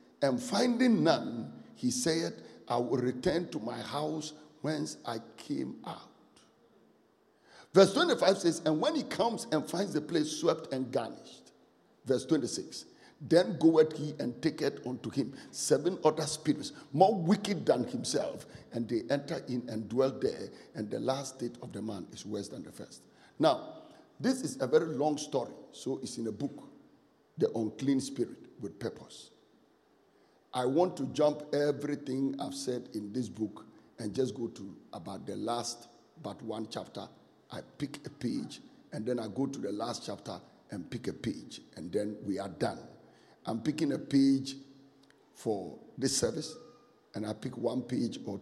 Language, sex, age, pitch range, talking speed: English, male, 50-69, 115-160 Hz, 165 wpm